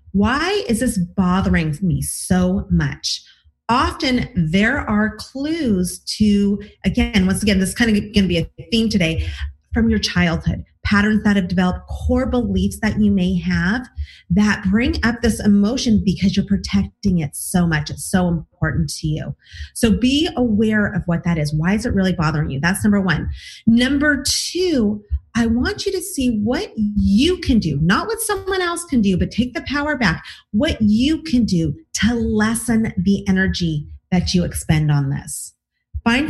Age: 30-49